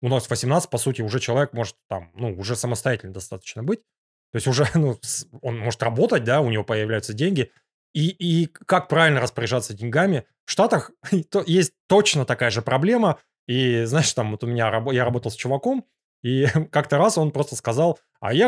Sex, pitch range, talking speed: male, 115-160 Hz, 190 wpm